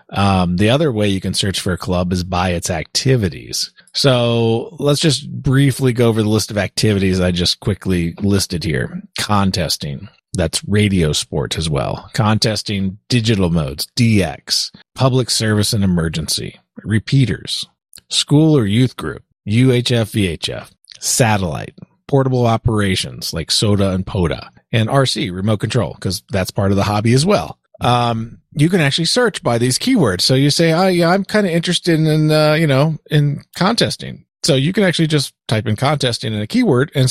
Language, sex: English, male